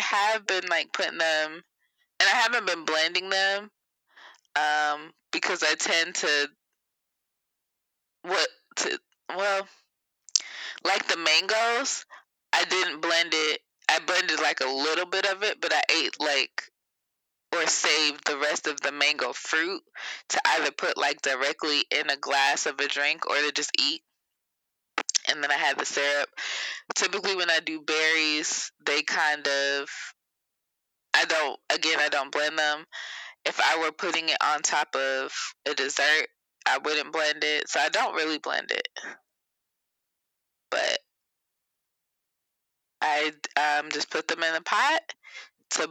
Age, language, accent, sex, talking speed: 20-39, English, American, female, 145 wpm